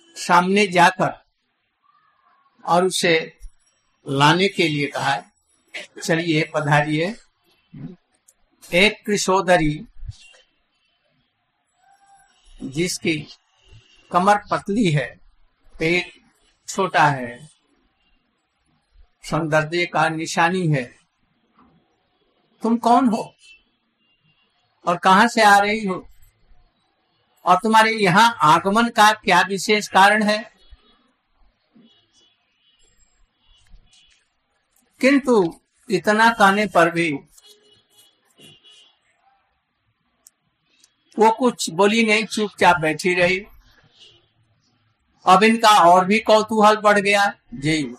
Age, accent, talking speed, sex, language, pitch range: 60-79, native, 75 wpm, male, Hindi, 165-220 Hz